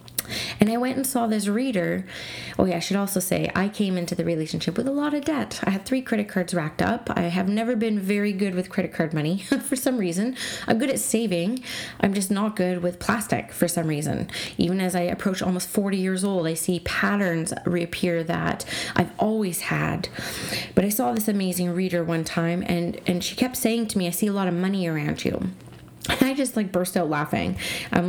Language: English